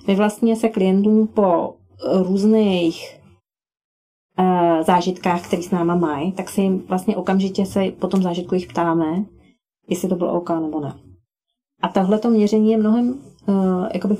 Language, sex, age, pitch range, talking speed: Czech, female, 30-49, 165-195 Hz, 150 wpm